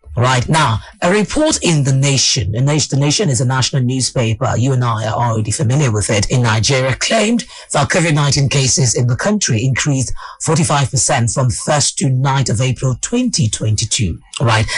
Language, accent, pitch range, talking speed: English, British, 125-155 Hz, 160 wpm